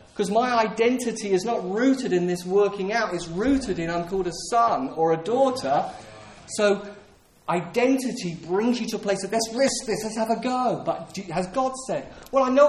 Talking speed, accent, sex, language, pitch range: 200 wpm, British, male, English, 165-225 Hz